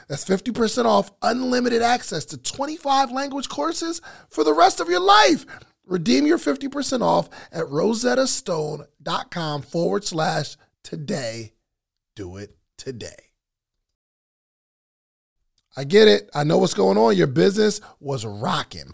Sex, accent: male, American